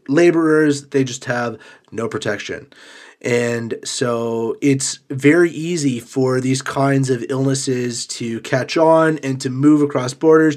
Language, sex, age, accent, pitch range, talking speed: English, male, 30-49, American, 115-140 Hz, 135 wpm